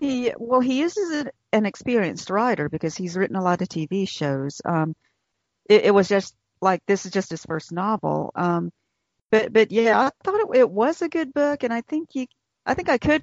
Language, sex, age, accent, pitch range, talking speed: English, female, 50-69, American, 170-220 Hz, 220 wpm